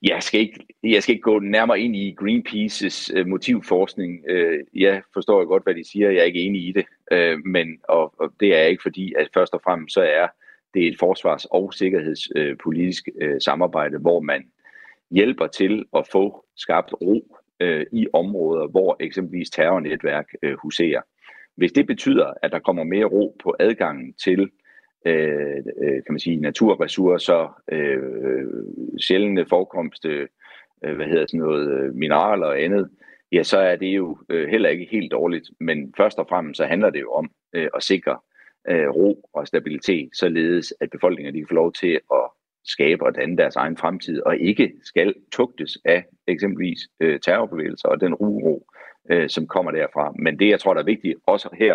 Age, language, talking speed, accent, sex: 40-59, Danish, 170 wpm, native, male